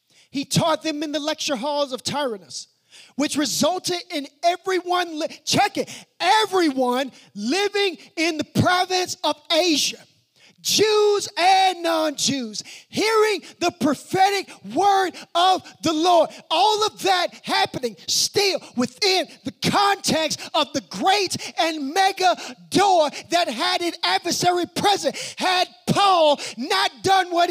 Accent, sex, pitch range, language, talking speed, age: American, male, 270-375 Hz, English, 120 wpm, 30-49